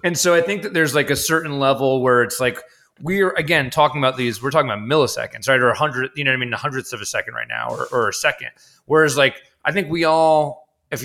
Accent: American